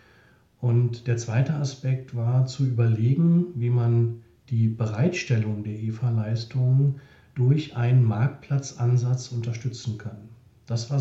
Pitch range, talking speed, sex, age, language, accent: 115-140 Hz, 110 wpm, male, 40-59, German, German